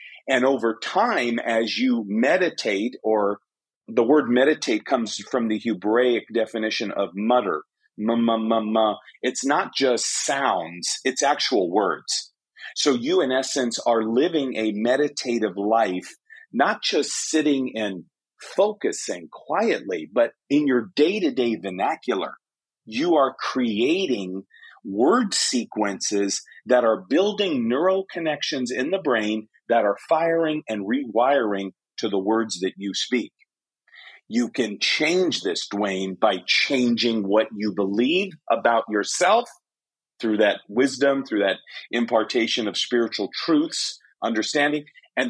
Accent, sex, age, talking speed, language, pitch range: American, male, 40-59, 125 wpm, English, 110-145 Hz